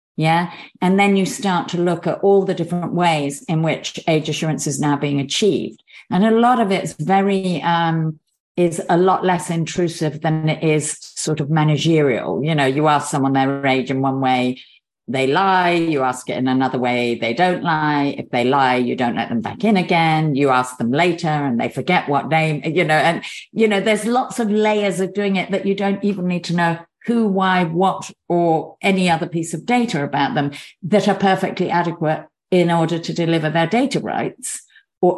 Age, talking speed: 50-69, 205 wpm